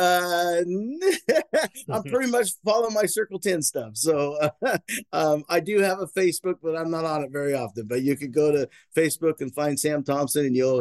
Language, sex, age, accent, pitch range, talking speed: English, male, 40-59, American, 130-155 Hz, 200 wpm